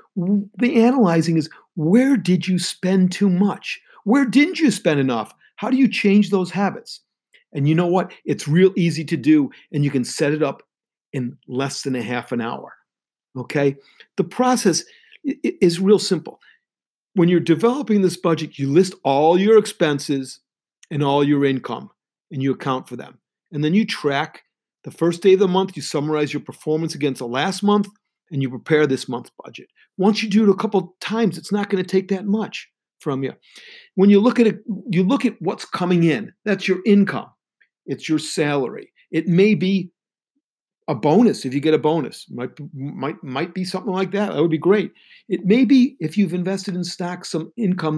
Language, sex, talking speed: English, male, 195 wpm